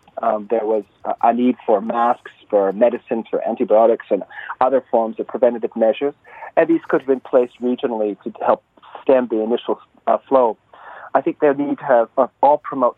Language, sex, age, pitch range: Korean, male, 40-59, 115-135 Hz